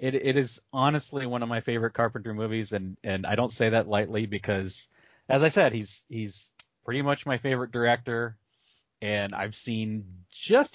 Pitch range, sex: 105-130 Hz, male